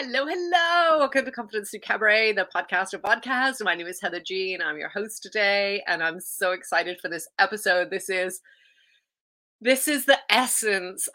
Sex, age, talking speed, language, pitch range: female, 30-49, 185 wpm, English, 170-215 Hz